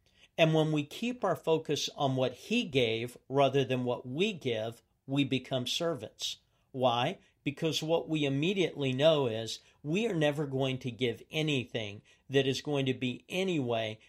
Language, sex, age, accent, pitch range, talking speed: English, male, 50-69, American, 120-155 Hz, 160 wpm